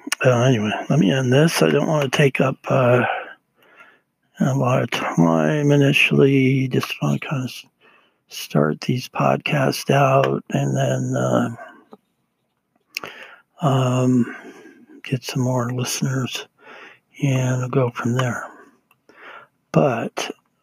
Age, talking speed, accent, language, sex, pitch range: 60-79, 115 wpm, American, English, male, 125-140 Hz